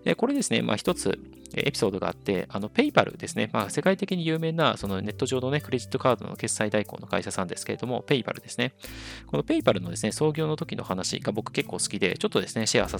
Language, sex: Japanese, male